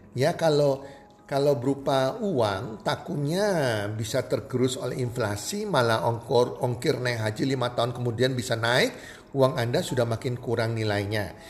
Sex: male